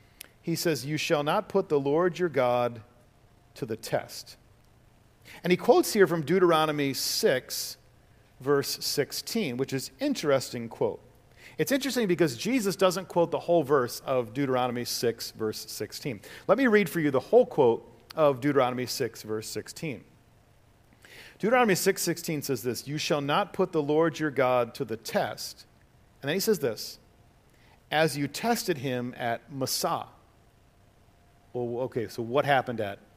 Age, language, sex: 50-69, English, male